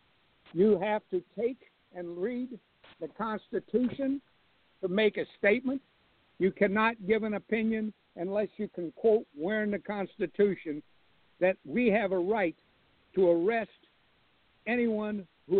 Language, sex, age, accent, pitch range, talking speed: English, male, 60-79, American, 180-215 Hz, 130 wpm